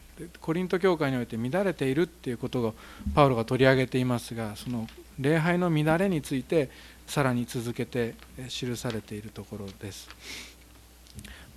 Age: 40-59